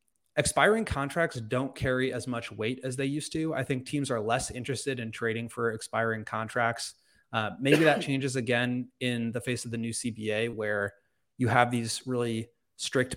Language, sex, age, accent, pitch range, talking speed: English, male, 20-39, American, 110-135 Hz, 180 wpm